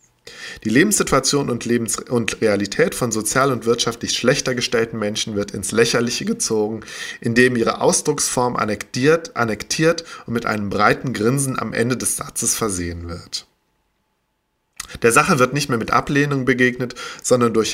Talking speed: 145 wpm